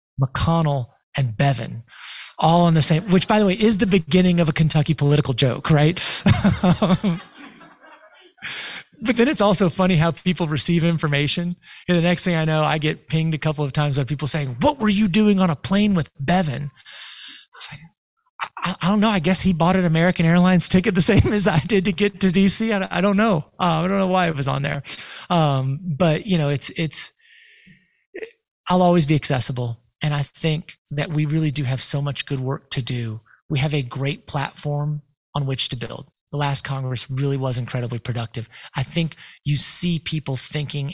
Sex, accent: male, American